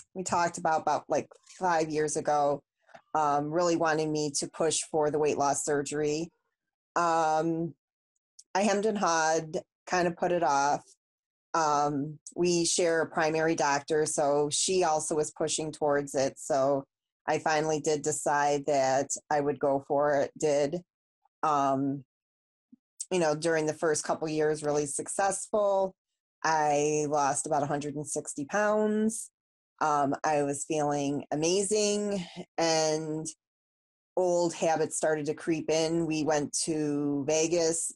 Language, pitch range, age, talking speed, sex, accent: English, 145-170 Hz, 30-49, 135 wpm, female, American